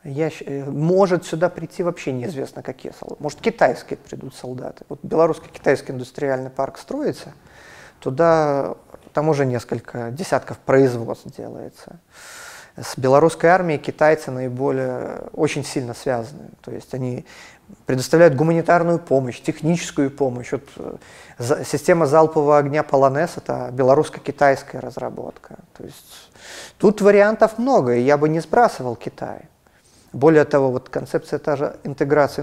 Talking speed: 120 wpm